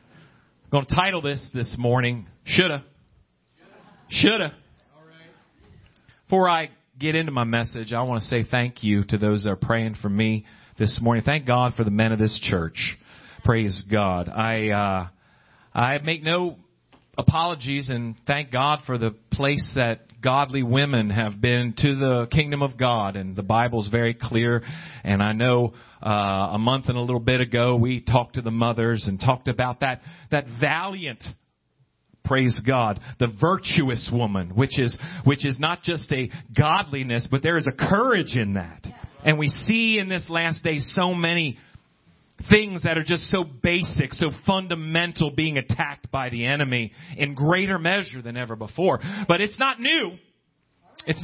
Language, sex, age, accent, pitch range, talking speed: English, male, 40-59, American, 120-165 Hz, 165 wpm